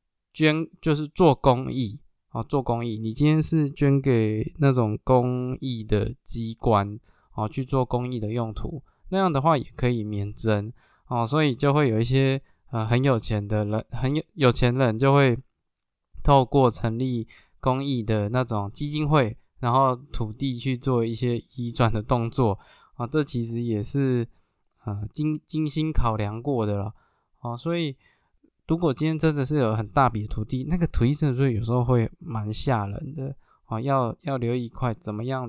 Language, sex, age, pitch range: Chinese, male, 20-39, 115-140 Hz